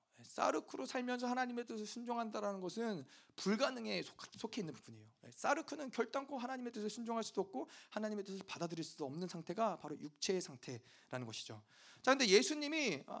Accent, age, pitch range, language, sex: native, 40-59, 195-255 Hz, Korean, male